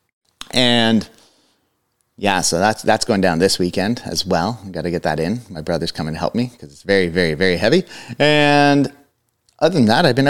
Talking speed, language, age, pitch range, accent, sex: 205 wpm, English, 30-49, 90-120 Hz, American, male